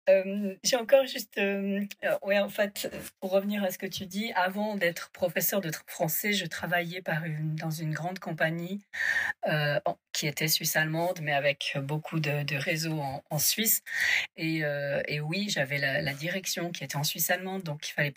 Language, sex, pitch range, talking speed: French, female, 155-195 Hz, 190 wpm